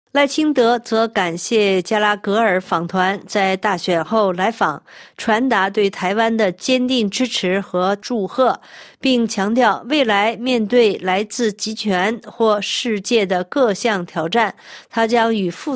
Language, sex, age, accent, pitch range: Chinese, female, 50-69, native, 190-235 Hz